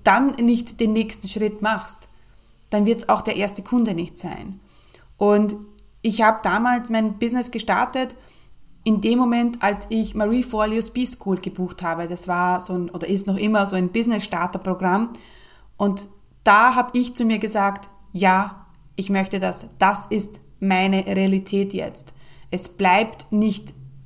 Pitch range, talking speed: 190-220 Hz, 160 wpm